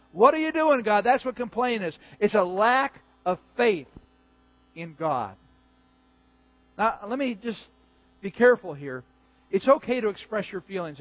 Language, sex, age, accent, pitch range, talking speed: English, male, 50-69, American, 145-200 Hz, 160 wpm